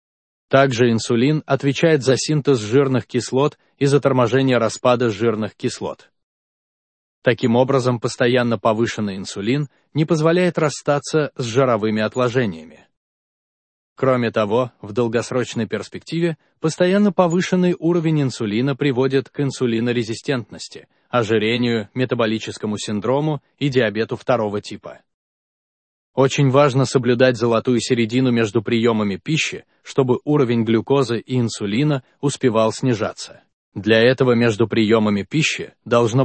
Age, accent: 20-39, native